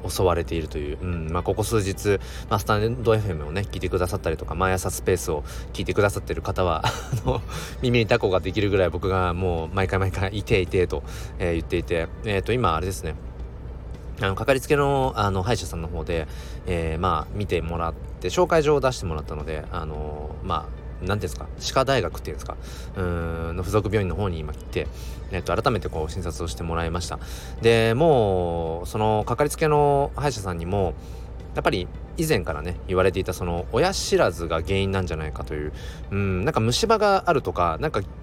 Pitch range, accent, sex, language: 80-110 Hz, native, male, Japanese